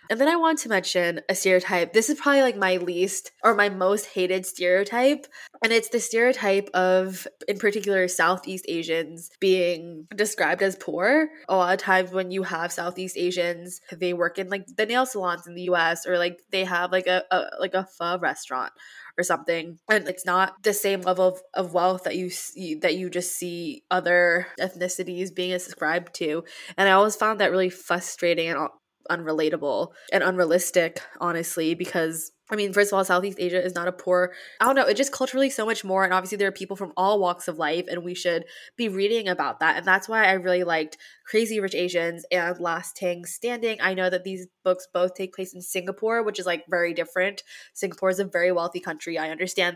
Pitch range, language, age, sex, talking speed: 175-200 Hz, English, 20-39, female, 205 wpm